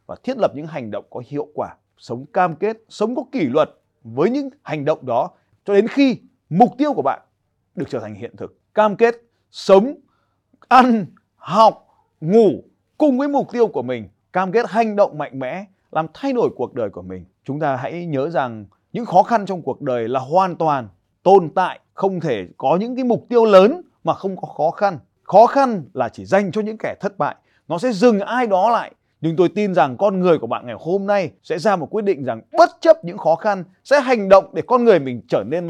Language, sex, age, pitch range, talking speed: Vietnamese, male, 30-49, 160-255 Hz, 225 wpm